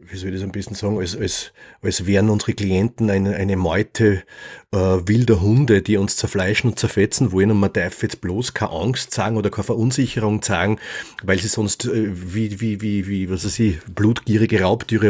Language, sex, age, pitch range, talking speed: German, male, 30-49, 100-120 Hz, 195 wpm